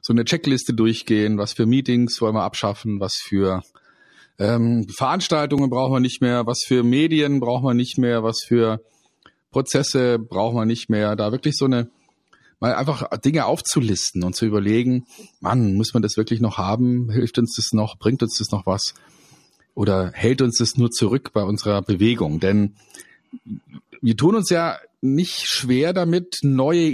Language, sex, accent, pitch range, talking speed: German, male, German, 105-130 Hz, 170 wpm